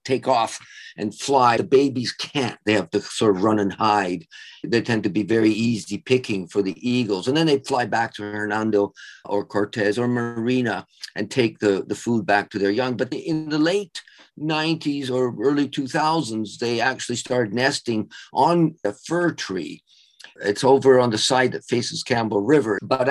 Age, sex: 50-69, male